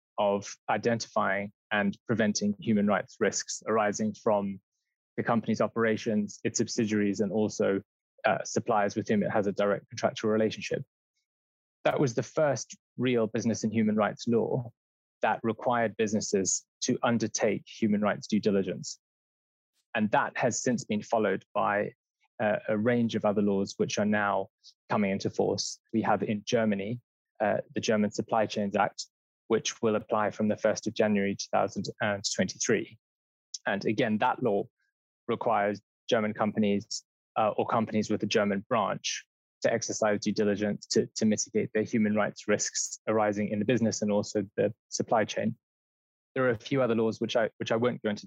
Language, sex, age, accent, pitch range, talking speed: English, male, 20-39, British, 105-115 Hz, 160 wpm